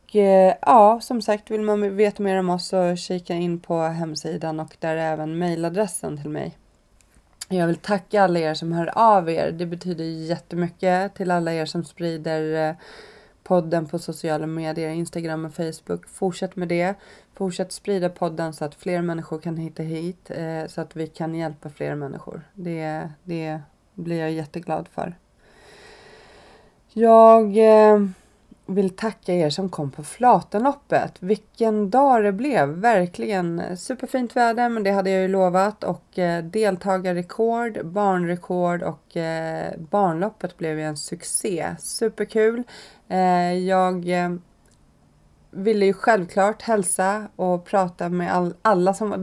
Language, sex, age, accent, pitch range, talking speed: Swedish, female, 30-49, native, 165-200 Hz, 145 wpm